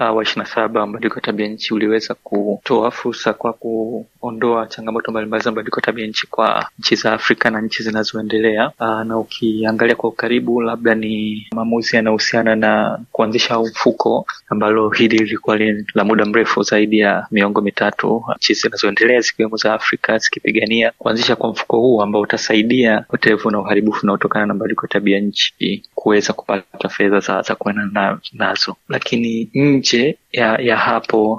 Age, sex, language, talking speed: 20-39, male, Swahili, 145 wpm